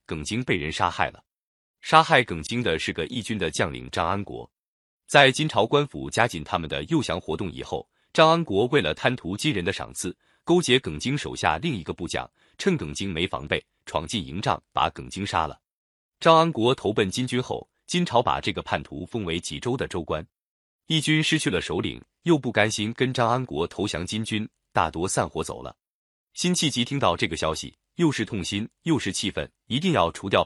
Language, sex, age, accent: Chinese, male, 30-49, native